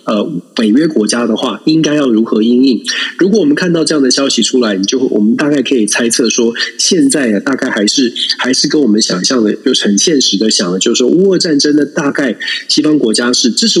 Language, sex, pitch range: Chinese, male, 110-155 Hz